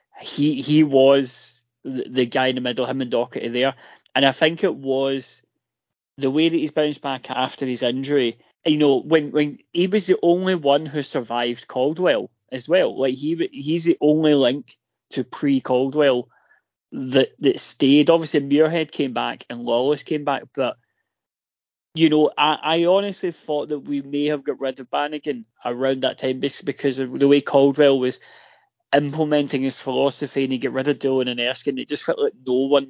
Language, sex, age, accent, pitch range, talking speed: English, male, 20-39, British, 125-155 Hz, 185 wpm